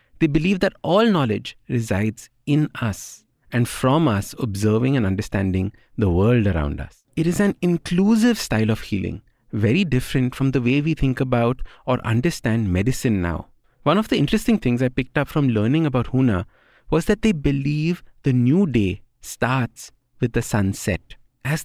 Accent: Indian